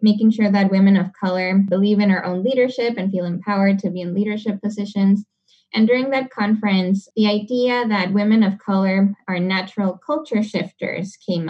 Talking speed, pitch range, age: 175 wpm, 190-220 Hz, 10-29